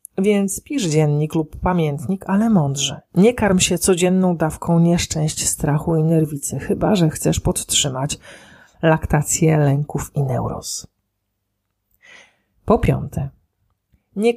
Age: 40-59